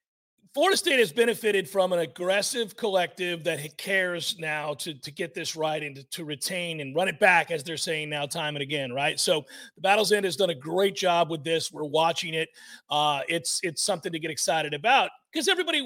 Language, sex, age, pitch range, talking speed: English, male, 40-59, 180-240 Hz, 210 wpm